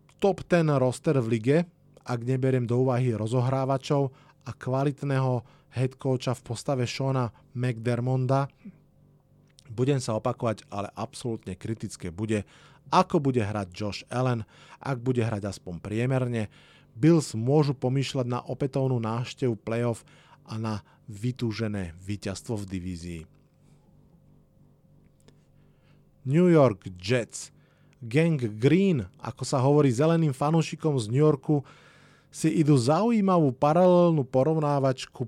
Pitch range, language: 115-145 Hz, Slovak